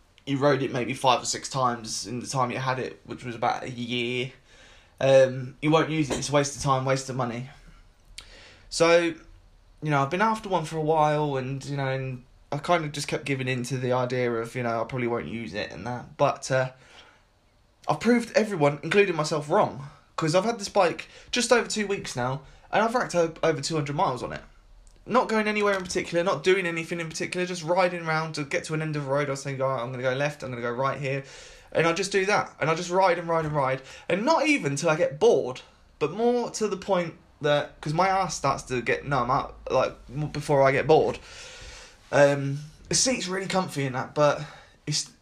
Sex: male